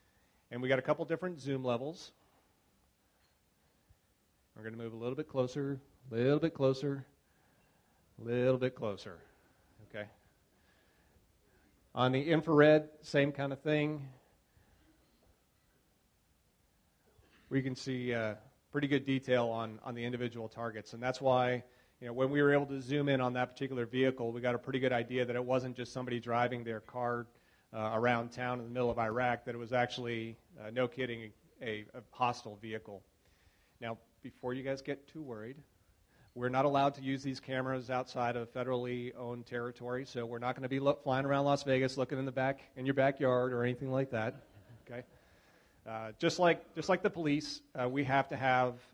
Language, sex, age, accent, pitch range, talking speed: English, male, 40-59, American, 115-135 Hz, 185 wpm